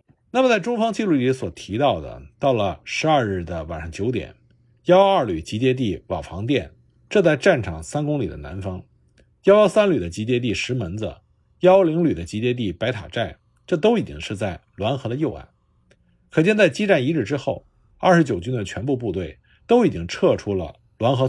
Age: 50-69